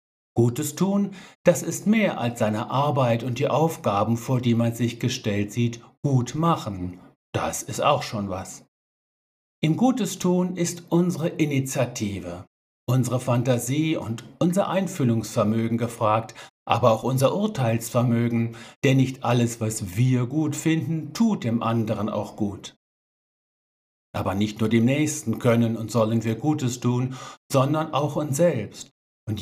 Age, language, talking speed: 60-79, German, 140 wpm